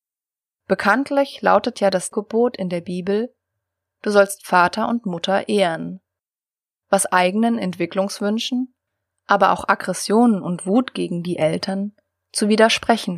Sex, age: female, 20-39